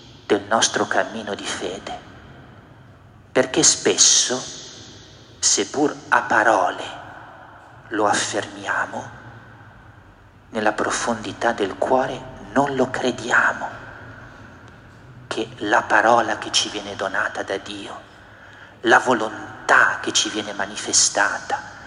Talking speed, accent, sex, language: 95 wpm, native, male, Italian